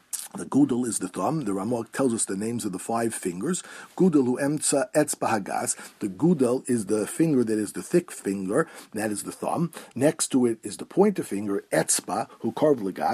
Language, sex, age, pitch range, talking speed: English, male, 50-69, 110-150 Hz, 180 wpm